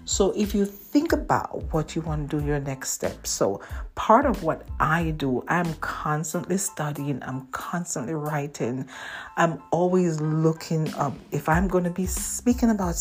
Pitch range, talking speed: 150-200 Hz, 165 wpm